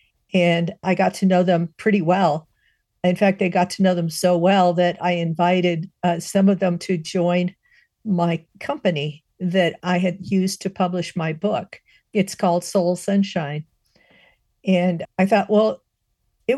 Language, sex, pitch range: English, female, 170-190 Hz